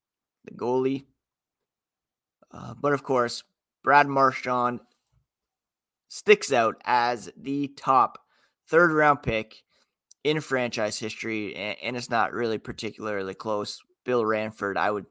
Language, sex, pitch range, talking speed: English, male, 110-145 Hz, 120 wpm